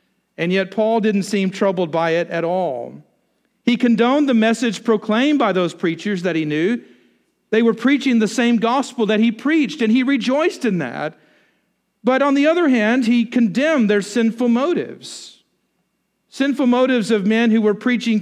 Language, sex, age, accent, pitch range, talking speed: English, male, 50-69, American, 190-255 Hz, 170 wpm